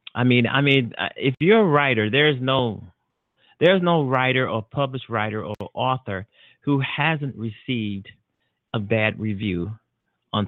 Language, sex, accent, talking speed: English, male, American, 145 wpm